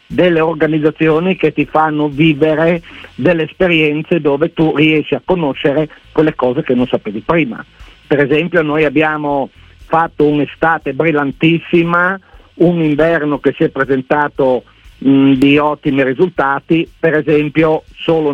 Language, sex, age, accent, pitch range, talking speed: Italian, male, 50-69, native, 135-160 Hz, 125 wpm